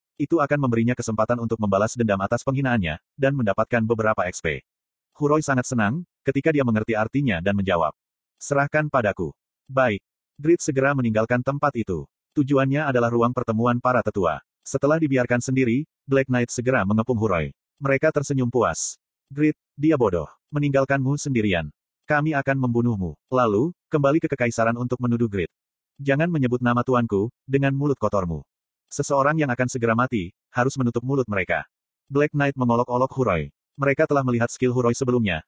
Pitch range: 110-140 Hz